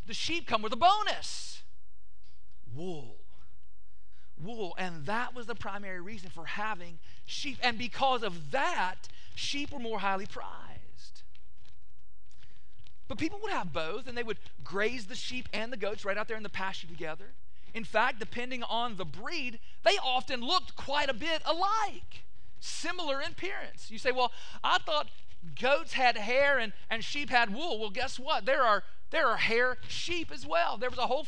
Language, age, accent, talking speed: English, 40-59, American, 175 wpm